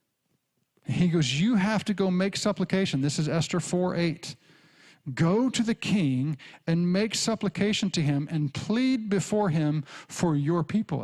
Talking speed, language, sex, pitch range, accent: 150 wpm, English, male, 150-205 Hz, American